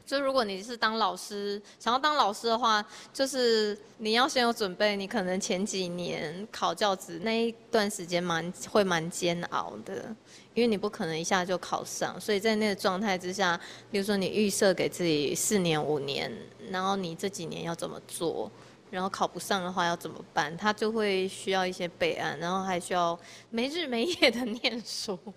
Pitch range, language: 180-220 Hz, Chinese